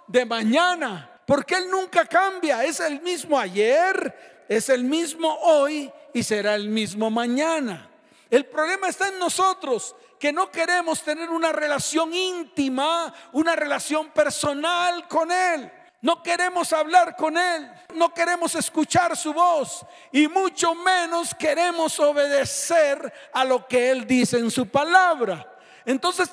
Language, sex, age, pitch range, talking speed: Spanish, male, 50-69, 285-350 Hz, 135 wpm